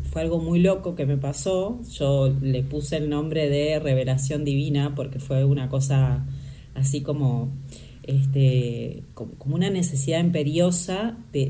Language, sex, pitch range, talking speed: Spanish, female, 135-175 Hz, 140 wpm